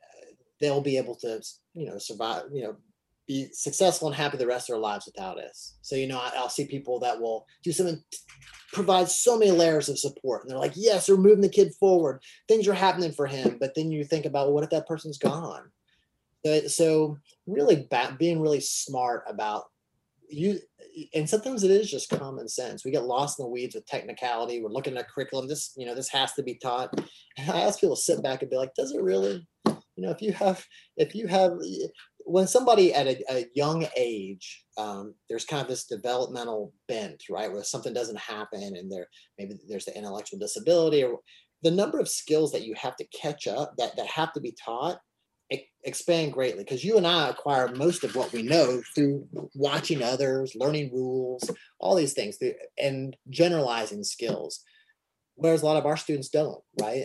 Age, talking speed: 30-49, 205 wpm